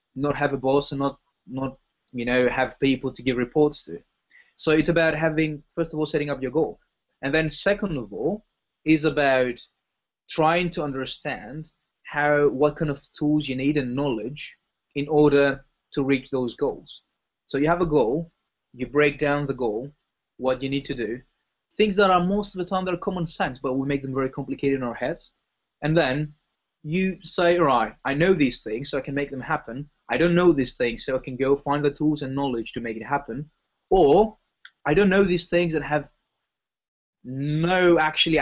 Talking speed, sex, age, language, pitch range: 200 wpm, male, 20-39, English, 130-165 Hz